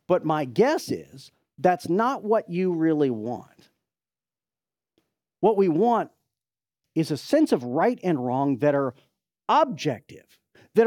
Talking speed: 135 wpm